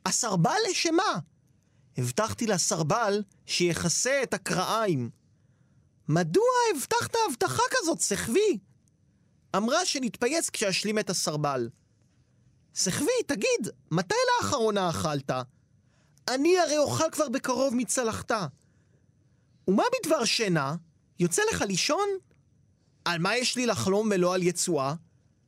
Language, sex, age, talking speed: Hebrew, male, 30-49, 100 wpm